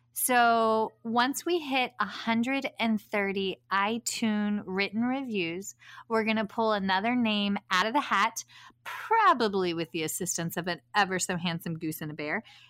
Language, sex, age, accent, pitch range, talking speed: English, female, 30-49, American, 195-240 Hz, 145 wpm